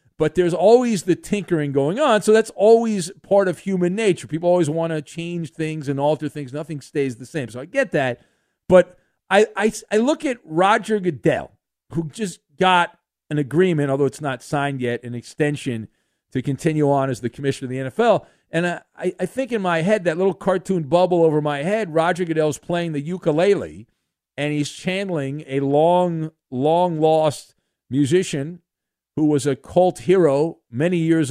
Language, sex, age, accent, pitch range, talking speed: English, male, 50-69, American, 140-180 Hz, 180 wpm